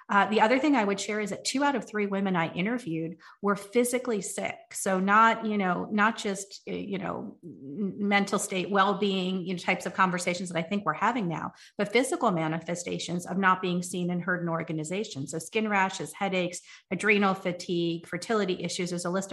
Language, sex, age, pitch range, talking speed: English, female, 40-59, 170-205 Hz, 195 wpm